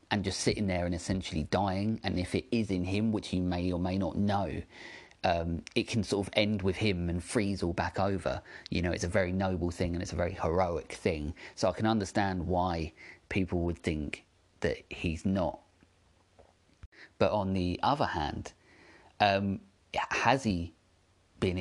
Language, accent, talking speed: English, British, 185 wpm